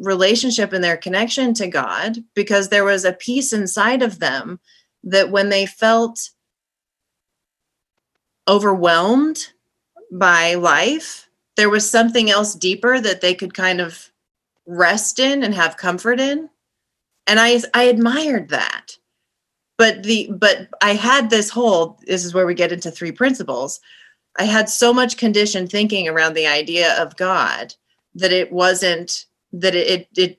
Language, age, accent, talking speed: English, 30-49, American, 145 wpm